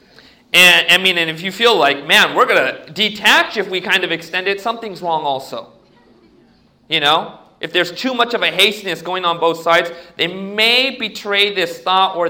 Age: 40-59